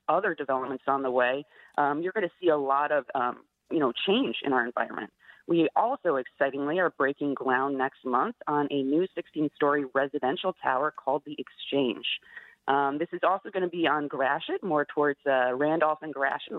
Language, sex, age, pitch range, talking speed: English, female, 30-49, 140-170 Hz, 190 wpm